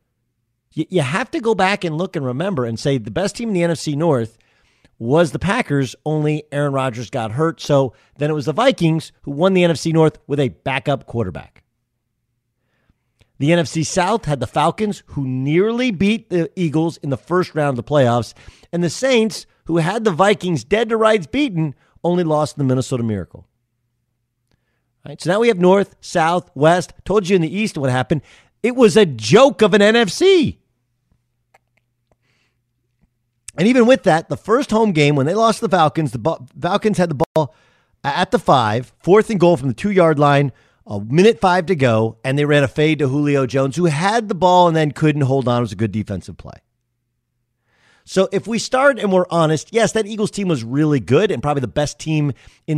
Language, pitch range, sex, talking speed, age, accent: English, 125-185 Hz, male, 195 wpm, 40-59, American